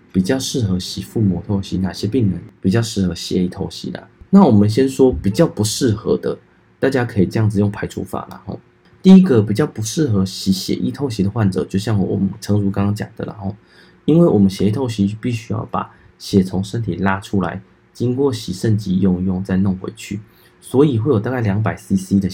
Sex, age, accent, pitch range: male, 20-39, native, 95-115 Hz